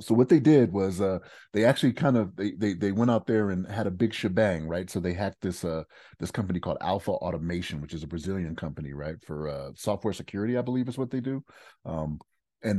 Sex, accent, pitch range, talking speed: male, American, 85-110 Hz, 235 wpm